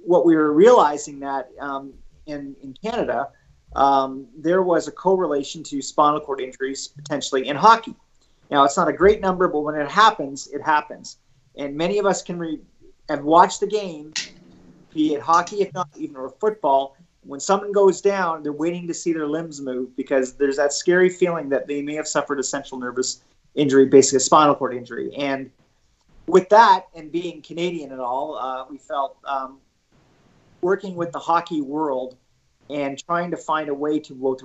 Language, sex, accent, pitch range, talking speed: English, male, American, 135-165 Hz, 185 wpm